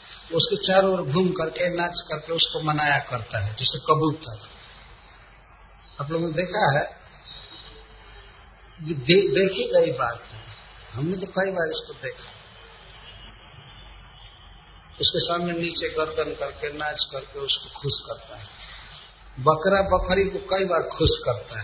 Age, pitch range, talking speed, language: 50-69, 135-185 Hz, 125 wpm, Hindi